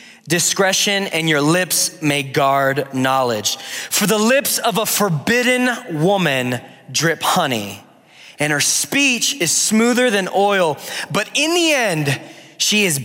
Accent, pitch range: American, 165-235 Hz